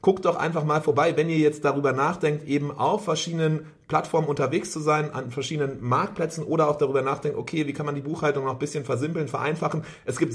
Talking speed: 215 wpm